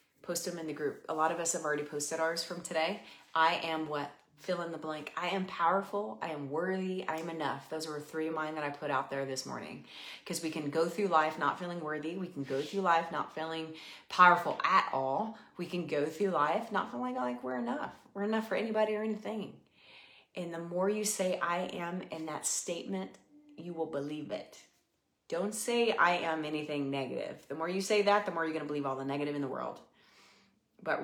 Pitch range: 155-195 Hz